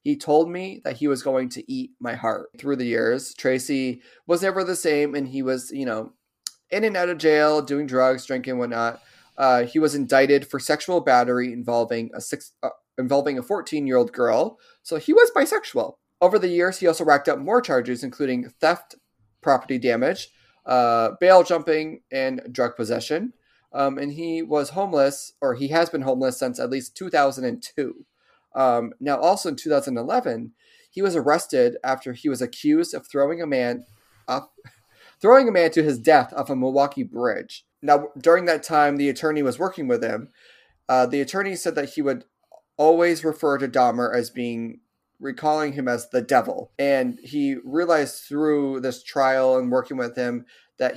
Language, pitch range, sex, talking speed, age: English, 130-175 Hz, male, 180 wpm, 30-49